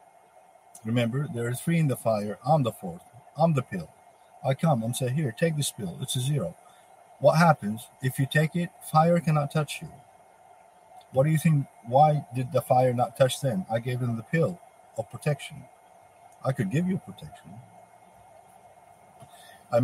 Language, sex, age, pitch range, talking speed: English, male, 50-69, 140-180 Hz, 175 wpm